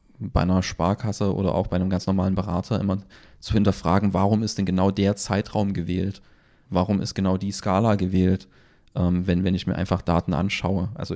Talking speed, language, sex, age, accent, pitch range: 185 wpm, German, male, 30-49, German, 95-110 Hz